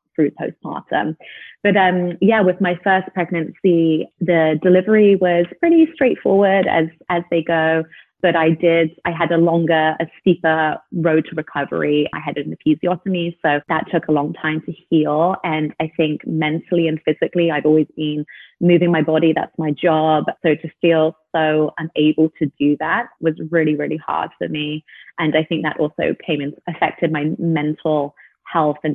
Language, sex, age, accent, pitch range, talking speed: English, female, 30-49, British, 150-170 Hz, 170 wpm